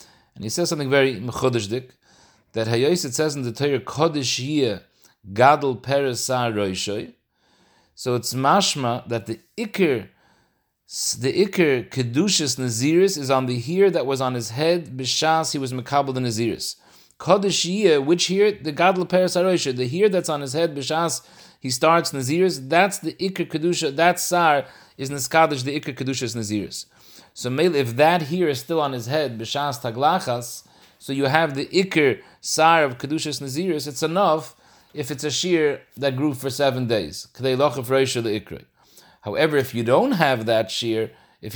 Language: English